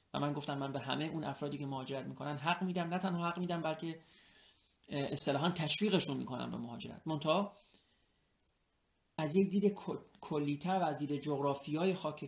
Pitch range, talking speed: 140-170 Hz, 160 wpm